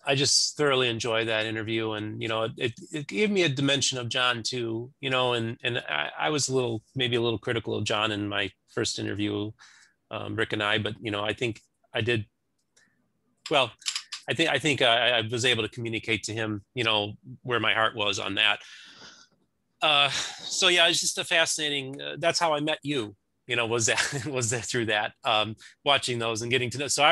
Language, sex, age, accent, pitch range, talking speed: English, male, 30-49, American, 115-145 Hz, 220 wpm